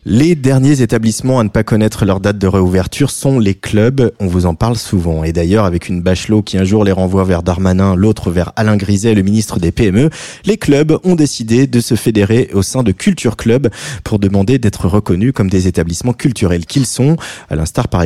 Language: French